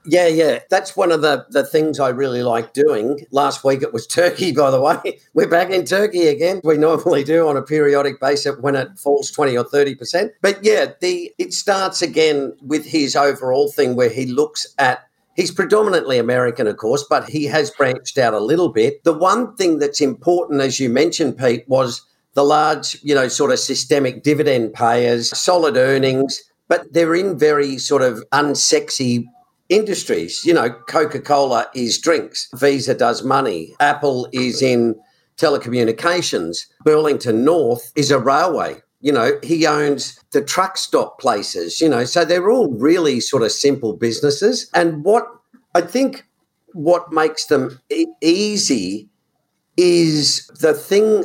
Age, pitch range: 50-69, 135-180 Hz